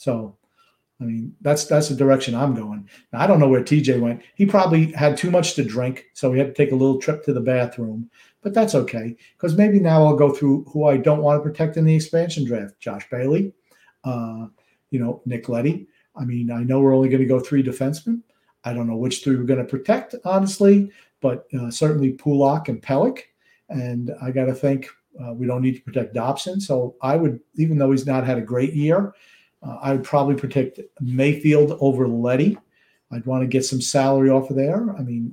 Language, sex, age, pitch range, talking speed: English, male, 50-69, 130-150 Hz, 220 wpm